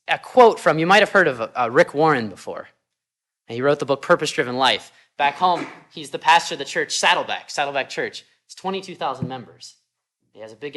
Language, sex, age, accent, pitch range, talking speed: English, male, 20-39, American, 135-215 Hz, 205 wpm